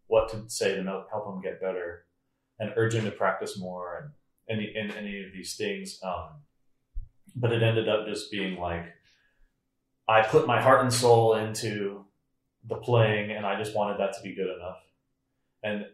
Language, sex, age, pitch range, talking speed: English, male, 30-49, 95-130 Hz, 180 wpm